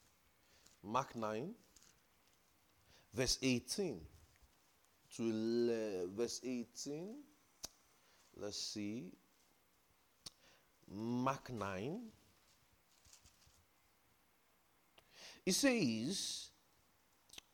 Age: 30-49